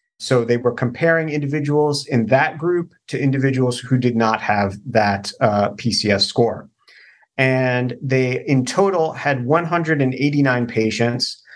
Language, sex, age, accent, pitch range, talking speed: English, male, 40-59, American, 120-145 Hz, 130 wpm